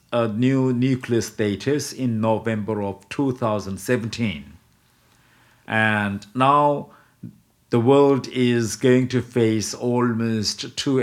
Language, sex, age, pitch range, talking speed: English, male, 50-69, 105-130 Hz, 100 wpm